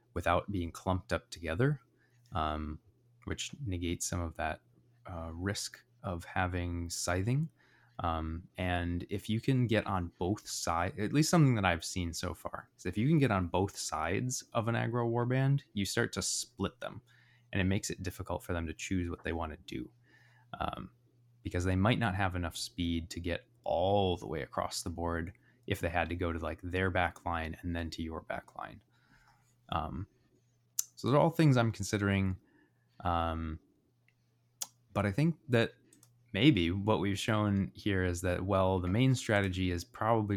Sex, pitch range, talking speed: male, 85-120 Hz, 180 wpm